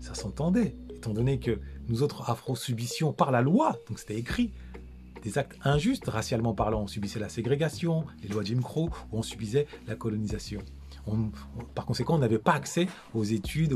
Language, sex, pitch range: French, male, 110-150 Hz